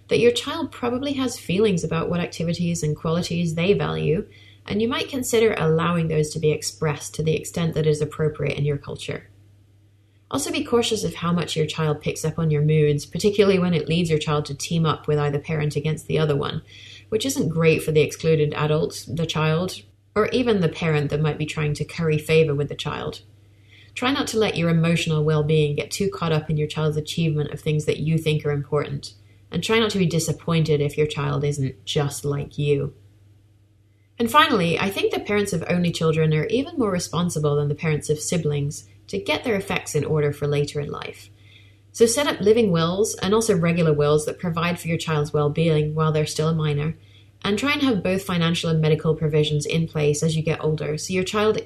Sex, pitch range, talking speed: female, 145-170 Hz, 215 wpm